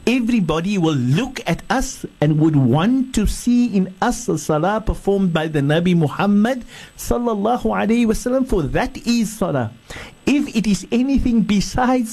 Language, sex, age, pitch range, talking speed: English, male, 60-79, 145-225 Hz, 155 wpm